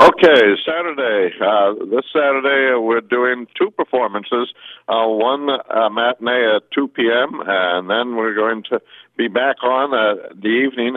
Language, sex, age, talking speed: English, male, 60-79, 150 wpm